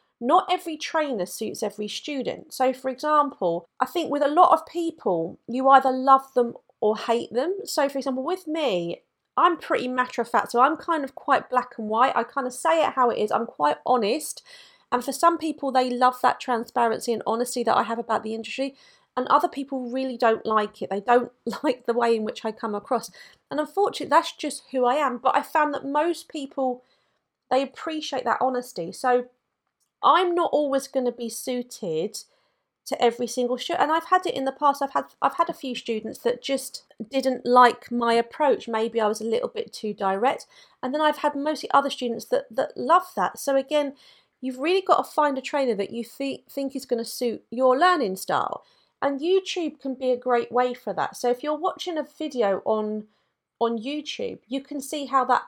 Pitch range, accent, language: 235-300 Hz, British, English